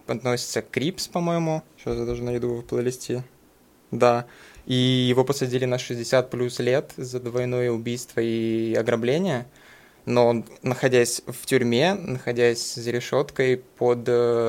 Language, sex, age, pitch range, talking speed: Russian, male, 20-39, 115-130 Hz, 125 wpm